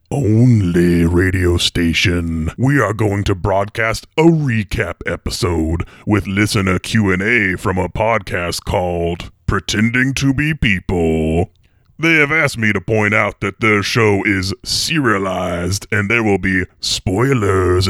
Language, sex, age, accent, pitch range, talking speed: English, female, 30-49, American, 95-120 Hz, 130 wpm